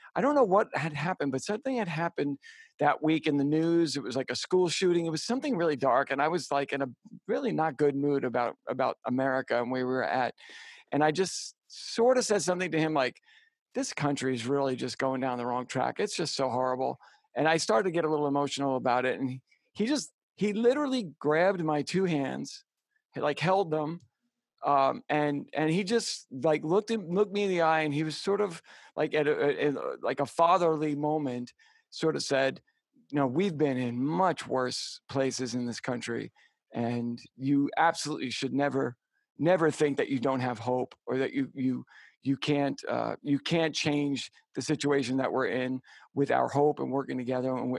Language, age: English, 50-69